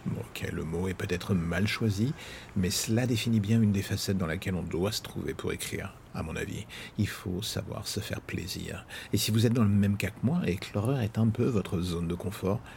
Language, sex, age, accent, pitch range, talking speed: French, male, 50-69, French, 95-115 Hz, 240 wpm